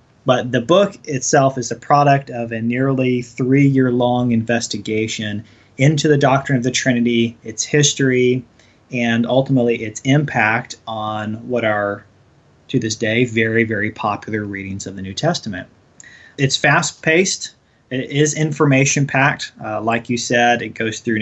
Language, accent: English, American